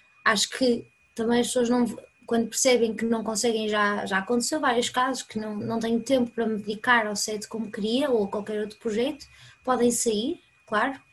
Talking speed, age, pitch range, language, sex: 195 wpm, 20-39, 220-245 Hz, Portuguese, female